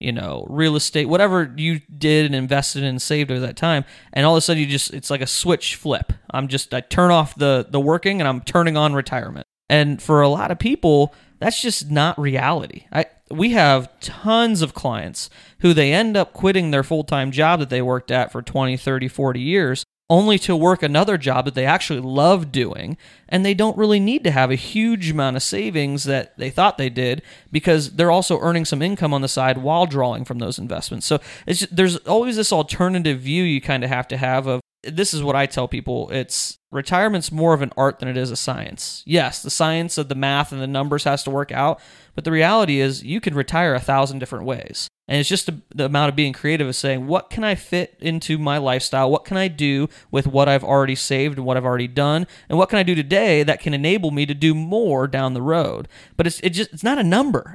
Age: 30-49